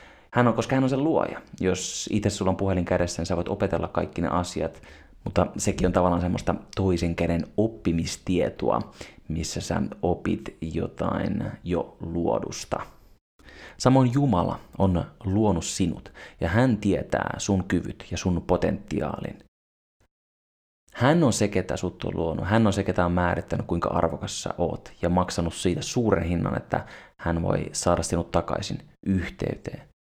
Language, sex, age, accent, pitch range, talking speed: Finnish, male, 30-49, native, 85-105 Hz, 150 wpm